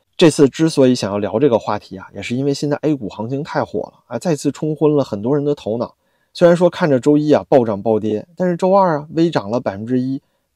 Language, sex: Chinese, male